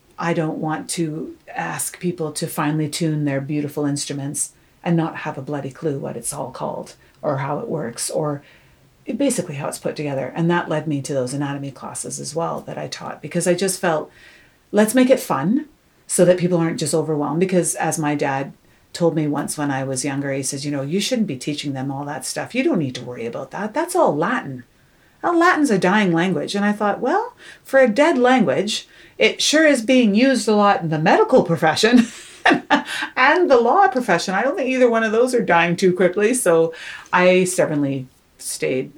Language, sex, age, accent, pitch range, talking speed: English, female, 30-49, American, 145-200 Hz, 210 wpm